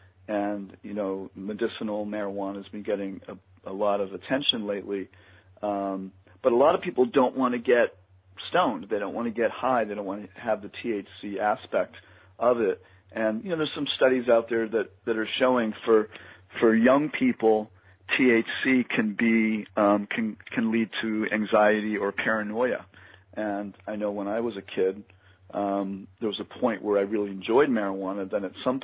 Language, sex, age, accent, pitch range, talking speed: English, male, 40-59, American, 95-115 Hz, 185 wpm